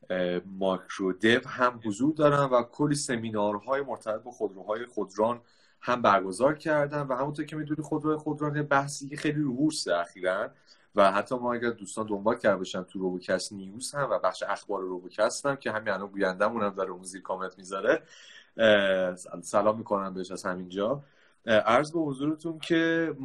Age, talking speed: 30-49, 170 wpm